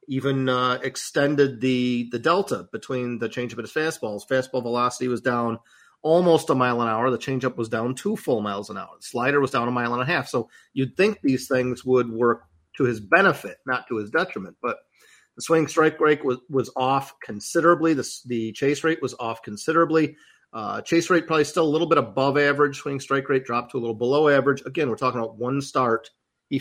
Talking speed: 210 wpm